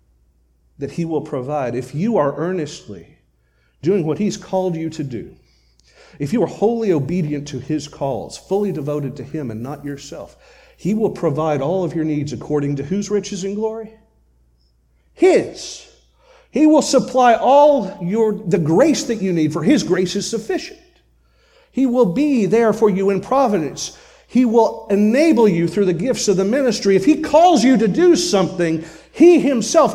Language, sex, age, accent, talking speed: English, male, 40-59, American, 170 wpm